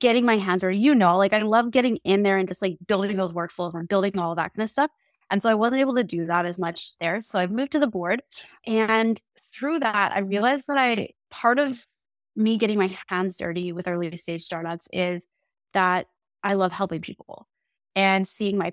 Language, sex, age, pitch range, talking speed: English, female, 20-39, 175-215 Hz, 220 wpm